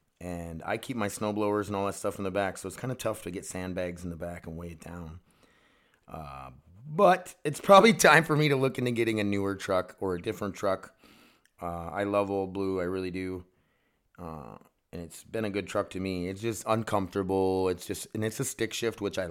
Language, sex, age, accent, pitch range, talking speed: English, male, 30-49, American, 95-140 Hz, 235 wpm